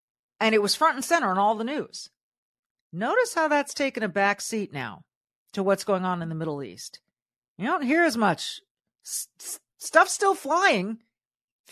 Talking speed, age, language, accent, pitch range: 180 wpm, 40-59, English, American, 165-235 Hz